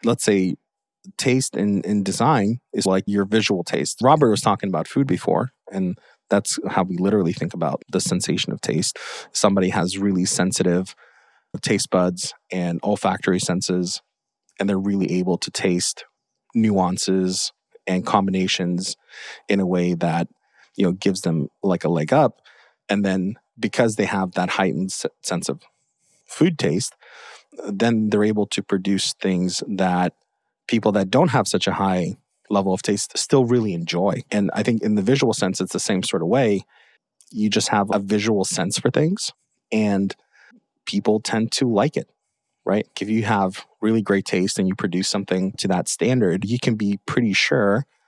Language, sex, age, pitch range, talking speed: English, male, 30-49, 95-105 Hz, 170 wpm